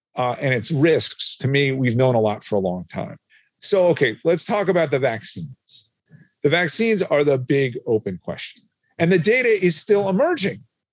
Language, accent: English, American